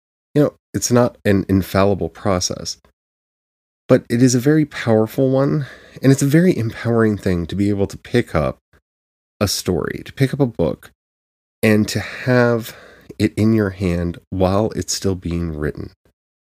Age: 30-49